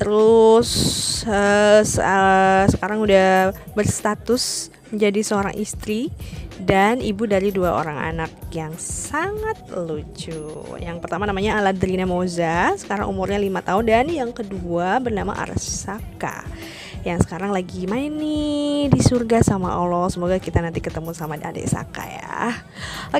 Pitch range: 195-260 Hz